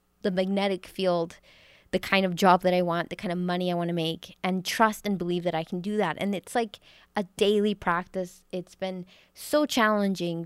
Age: 20-39